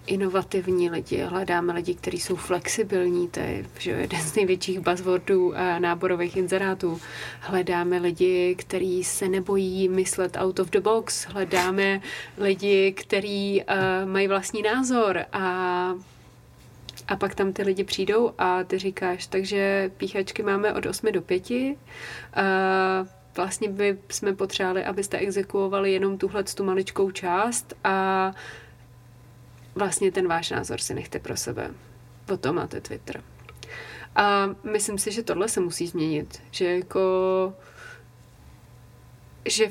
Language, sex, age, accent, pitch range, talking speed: Czech, female, 30-49, native, 180-200 Hz, 130 wpm